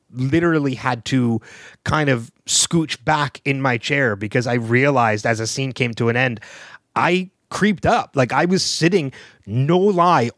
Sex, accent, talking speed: male, American, 170 wpm